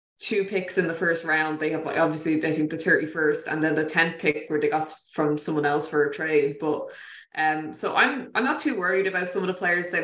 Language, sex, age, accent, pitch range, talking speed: English, female, 20-39, Irish, 155-175 Hz, 245 wpm